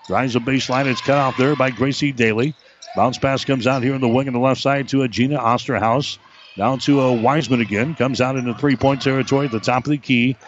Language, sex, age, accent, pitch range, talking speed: English, male, 60-79, American, 125-140 Hz, 235 wpm